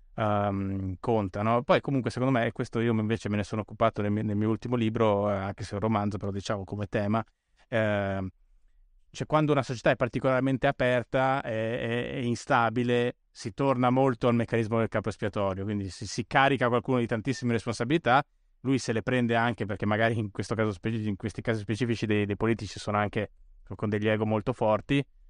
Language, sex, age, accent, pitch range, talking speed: Italian, male, 20-39, native, 110-130 Hz, 180 wpm